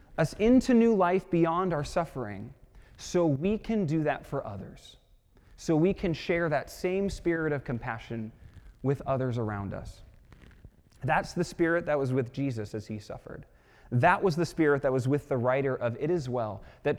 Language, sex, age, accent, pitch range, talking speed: English, male, 20-39, American, 115-165 Hz, 180 wpm